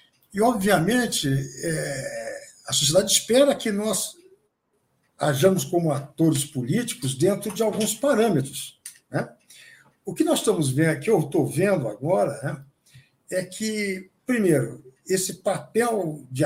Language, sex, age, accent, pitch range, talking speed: Portuguese, male, 60-79, Brazilian, 155-215 Hz, 115 wpm